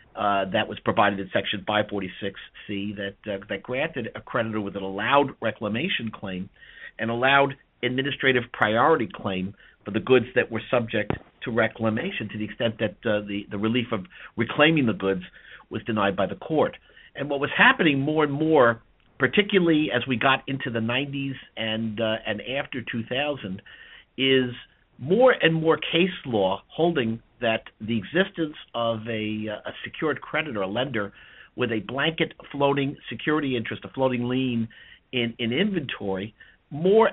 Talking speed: 160 wpm